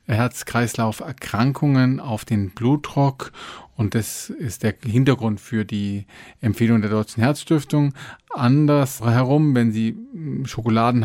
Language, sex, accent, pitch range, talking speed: German, male, German, 115-135 Hz, 105 wpm